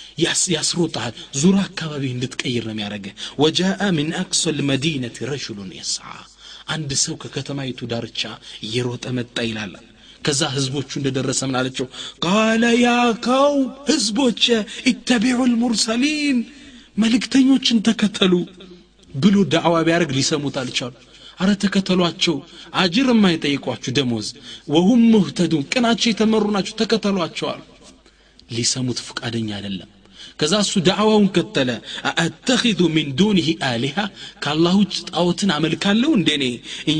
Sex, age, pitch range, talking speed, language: male, 30-49, 130-195 Hz, 100 wpm, Amharic